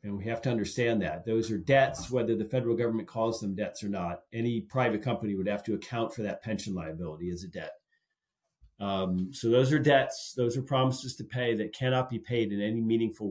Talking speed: 220 wpm